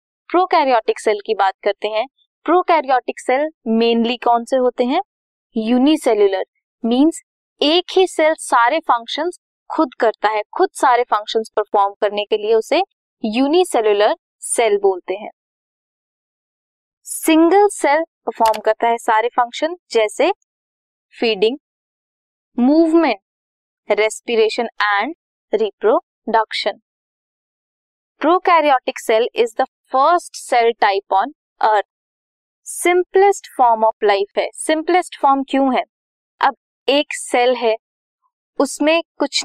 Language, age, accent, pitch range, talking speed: Hindi, 20-39, native, 225-320 Hz, 110 wpm